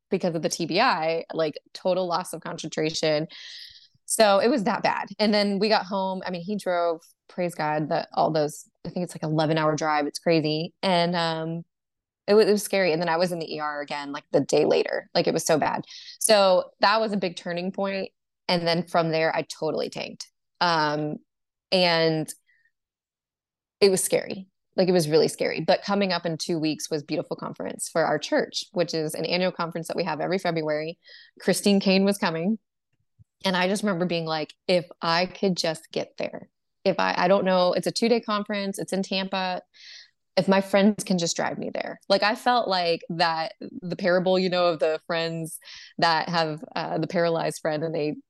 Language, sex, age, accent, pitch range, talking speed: English, female, 20-39, American, 160-195 Hz, 200 wpm